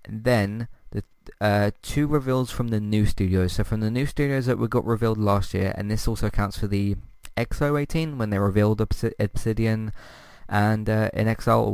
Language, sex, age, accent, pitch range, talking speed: English, male, 20-39, British, 95-120 Hz, 185 wpm